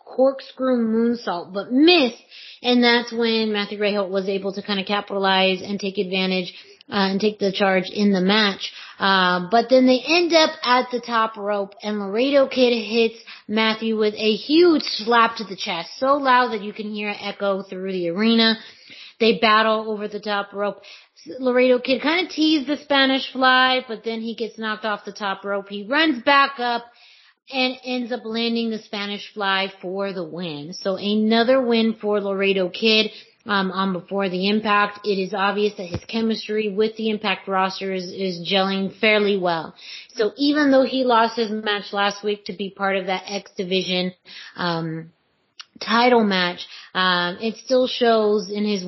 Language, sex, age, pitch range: English, female, 30-49, 195-230 Hz